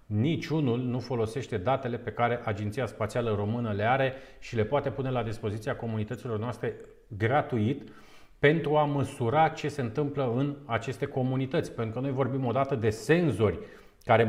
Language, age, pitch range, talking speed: Romanian, 40-59, 115-140 Hz, 155 wpm